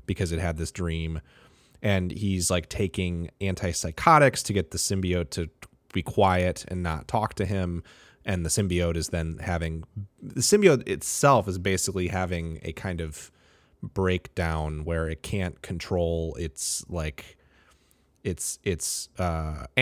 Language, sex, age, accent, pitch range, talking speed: English, male, 30-49, American, 85-100 Hz, 140 wpm